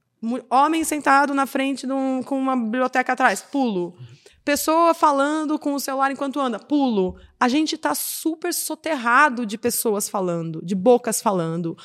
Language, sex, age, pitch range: Portuguese, female, 20-39, 220-285 Hz